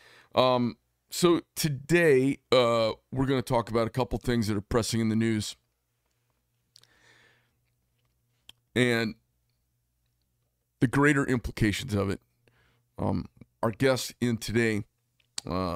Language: English